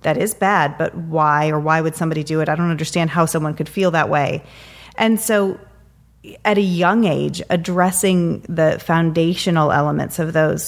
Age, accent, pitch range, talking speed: 30-49, American, 155-175 Hz, 180 wpm